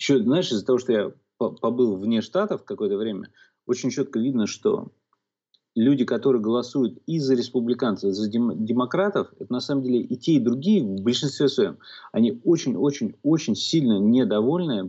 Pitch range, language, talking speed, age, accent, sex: 115-160 Hz, Russian, 155 wpm, 30-49, native, male